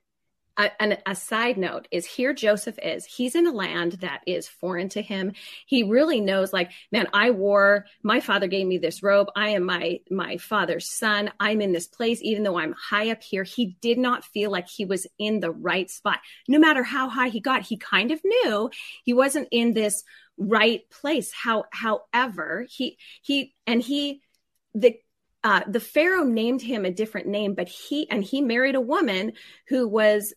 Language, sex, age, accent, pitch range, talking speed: English, female, 30-49, American, 195-255 Hz, 190 wpm